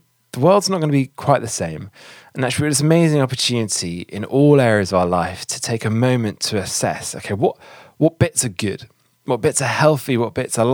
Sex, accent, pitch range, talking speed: male, British, 105-135 Hz, 225 wpm